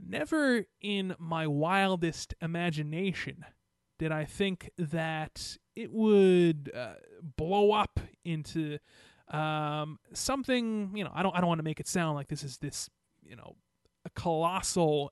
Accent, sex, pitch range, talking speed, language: American, male, 155-200 Hz, 145 wpm, English